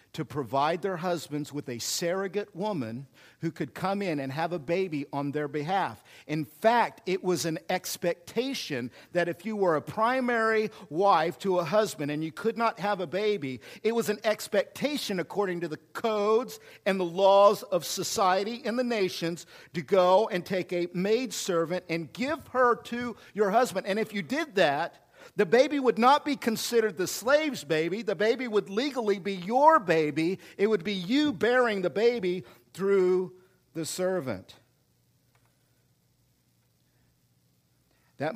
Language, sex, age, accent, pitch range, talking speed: English, male, 50-69, American, 145-210 Hz, 160 wpm